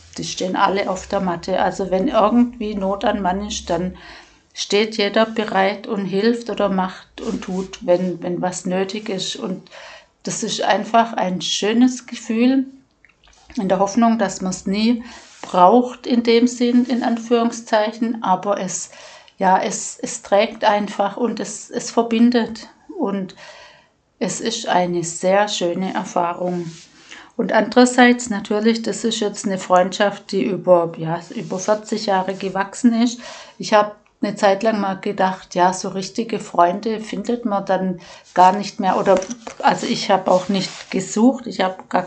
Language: German